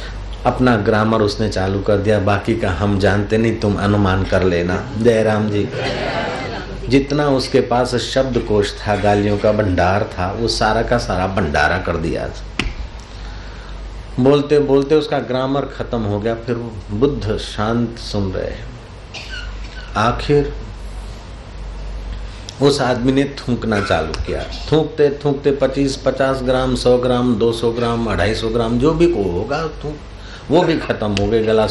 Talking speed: 110 wpm